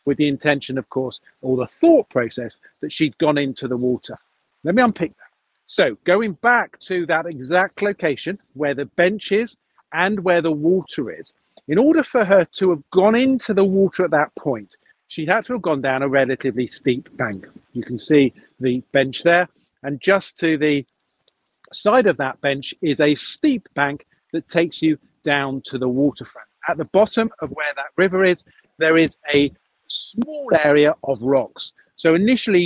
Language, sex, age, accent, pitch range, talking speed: English, male, 50-69, British, 140-185 Hz, 185 wpm